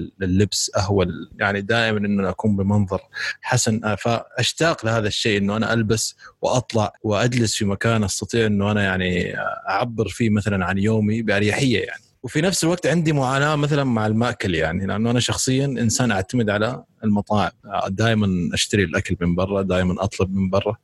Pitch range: 100-130 Hz